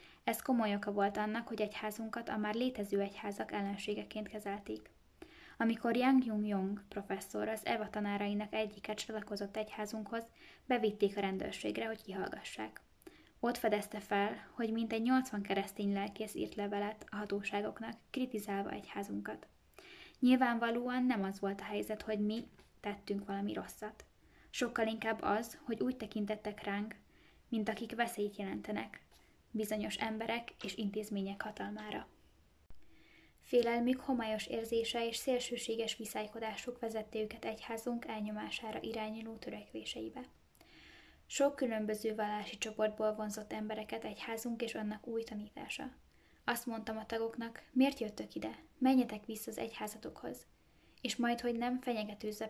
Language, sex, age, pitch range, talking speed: Hungarian, female, 10-29, 210-235 Hz, 125 wpm